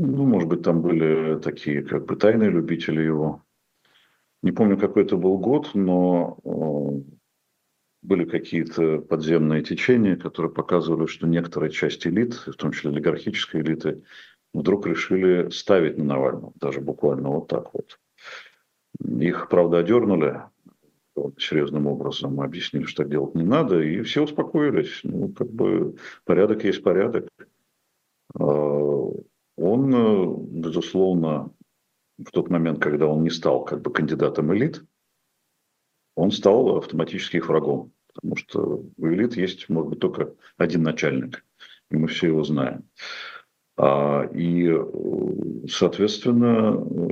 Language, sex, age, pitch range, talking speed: Russian, male, 50-69, 75-90 Hz, 125 wpm